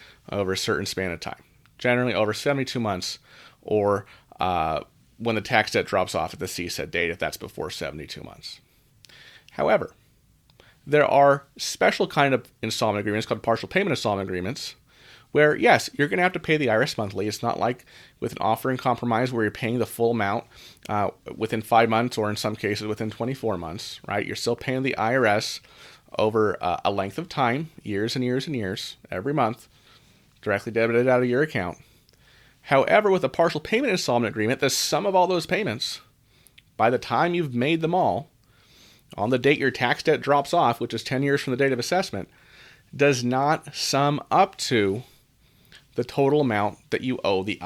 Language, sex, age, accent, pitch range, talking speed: English, male, 30-49, American, 110-145 Hz, 190 wpm